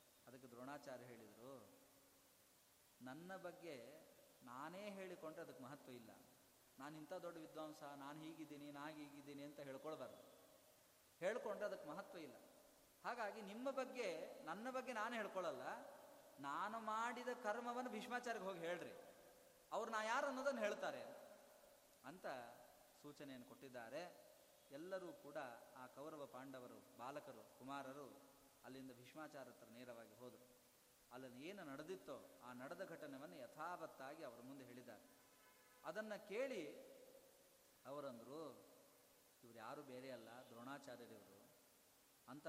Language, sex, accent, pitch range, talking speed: Kannada, male, native, 135-210 Hz, 105 wpm